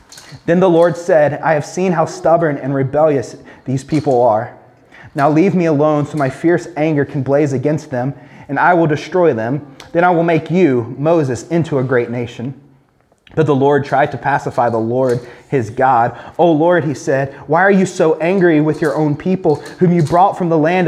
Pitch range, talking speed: 130-170 Hz, 200 wpm